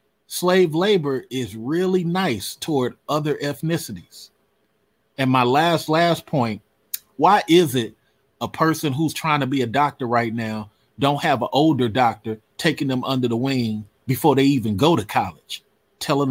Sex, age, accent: male, 30-49, American